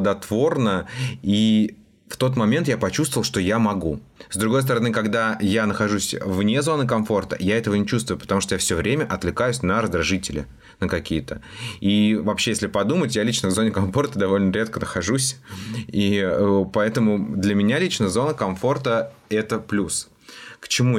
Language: Russian